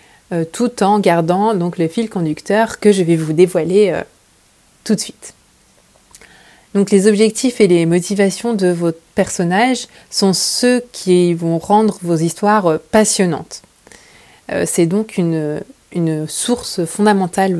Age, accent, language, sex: 20-39, French, French, female